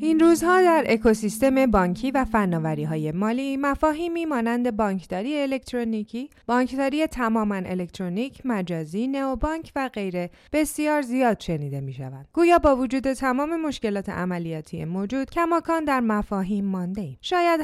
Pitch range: 210-285 Hz